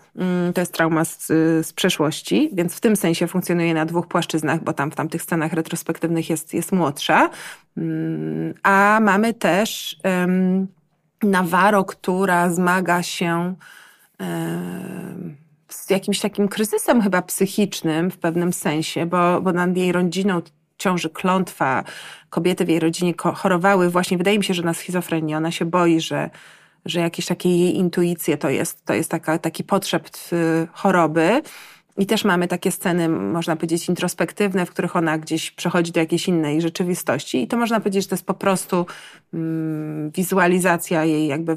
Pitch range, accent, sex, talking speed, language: 165-190 Hz, native, female, 155 wpm, Polish